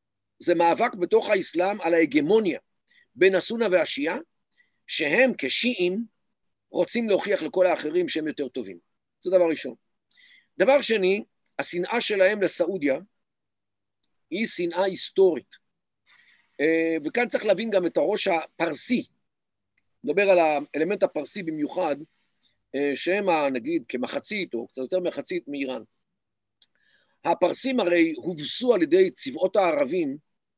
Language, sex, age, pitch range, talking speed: Hebrew, male, 50-69, 155-235 Hz, 110 wpm